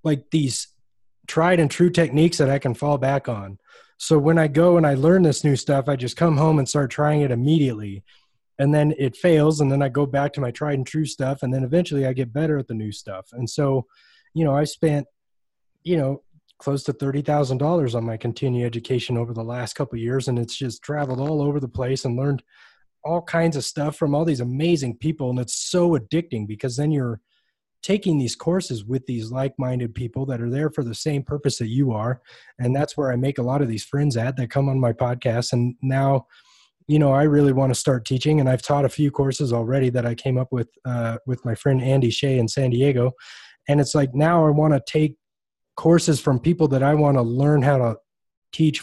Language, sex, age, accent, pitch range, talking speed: English, male, 20-39, American, 125-150 Hz, 230 wpm